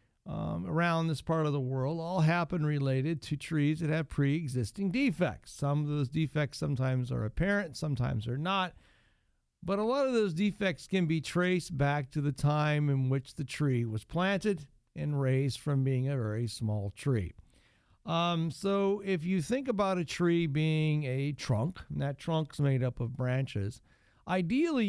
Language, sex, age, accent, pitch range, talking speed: English, male, 50-69, American, 140-180 Hz, 175 wpm